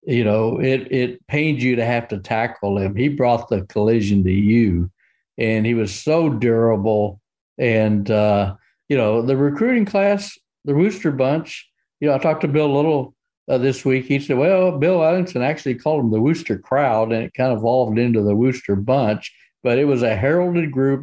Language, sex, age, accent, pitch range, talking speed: English, male, 50-69, American, 115-165 Hz, 195 wpm